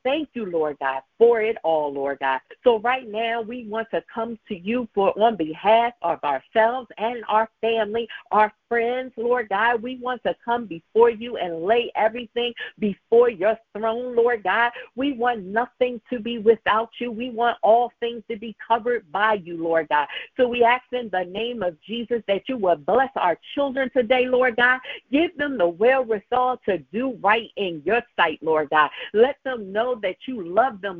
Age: 50-69